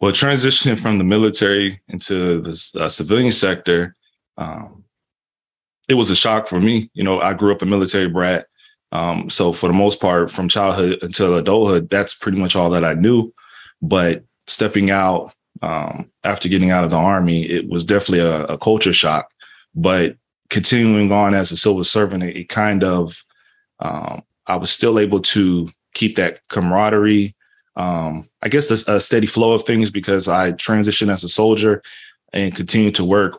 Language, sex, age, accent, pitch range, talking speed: English, male, 20-39, American, 90-105 Hz, 175 wpm